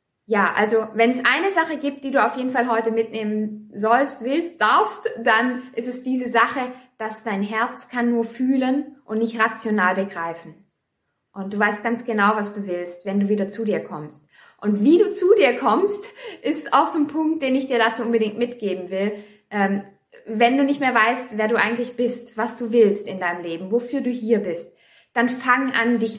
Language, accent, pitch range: German, German, 225-285 Hz